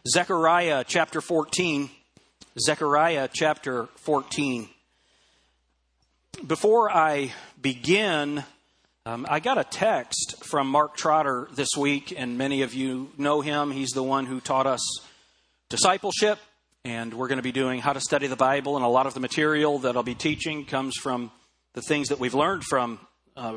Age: 40-59